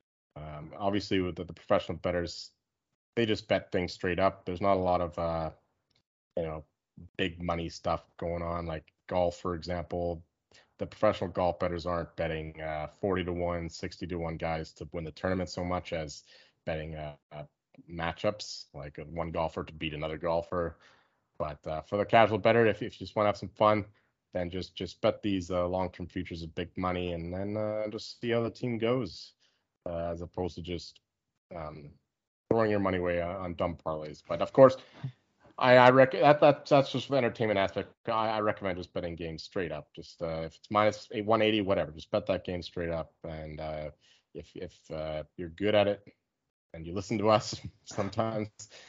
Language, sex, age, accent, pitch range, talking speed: English, male, 20-39, American, 85-105 Hz, 195 wpm